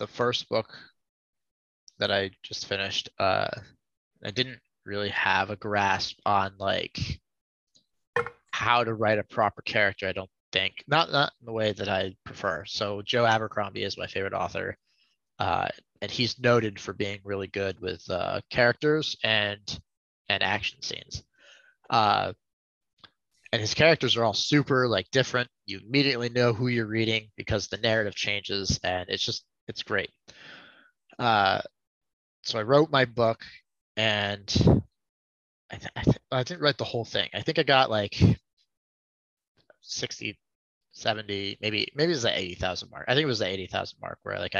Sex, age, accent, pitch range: male, 20-39, American, 100-125 Hz